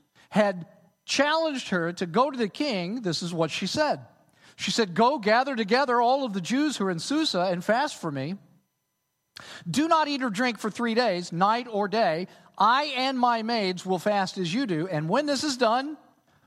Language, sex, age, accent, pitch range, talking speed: English, male, 40-59, American, 175-255 Hz, 200 wpm